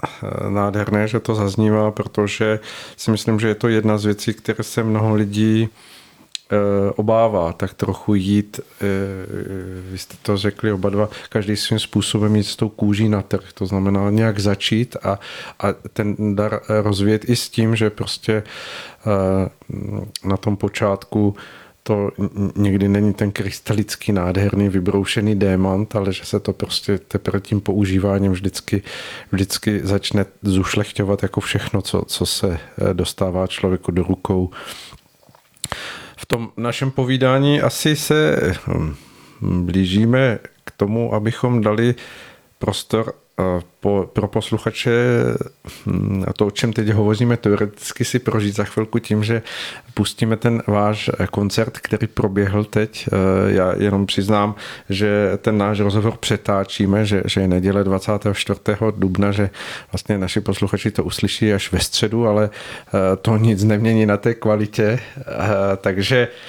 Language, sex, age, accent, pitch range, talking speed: Czech, male, 40-59, native, 100-110 Hz, 130 wpm